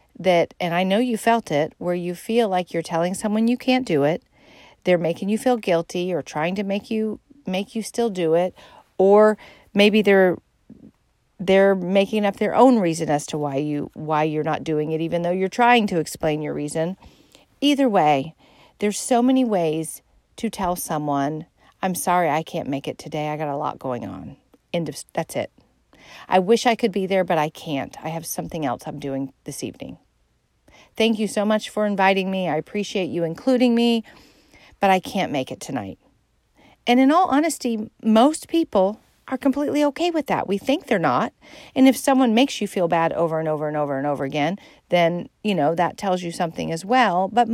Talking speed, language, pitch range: 200 wpm, English, 165-235 Hz